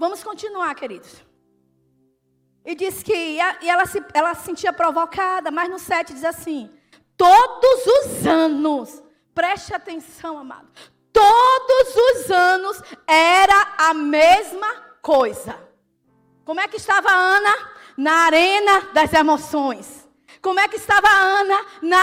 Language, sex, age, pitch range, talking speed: Portuguese, female, 20-39, 315-435 Hz, 130 wpm